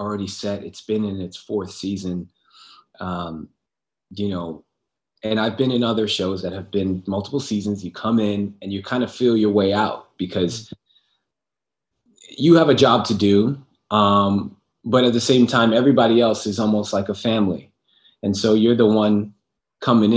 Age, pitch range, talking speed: 20-39, 100-120 Hz, 175 wpm